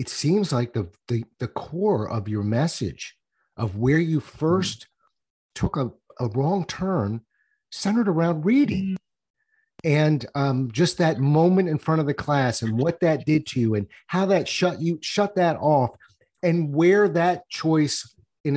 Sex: male